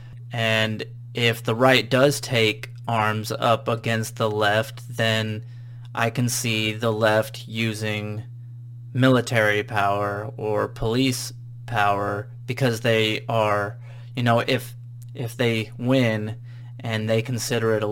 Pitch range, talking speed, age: 110-120 Hz, 125 wpm, 20-39